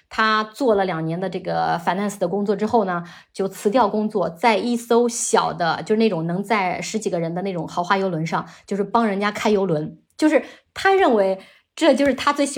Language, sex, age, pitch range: Chinese, female, 20-39, 180-235 Hz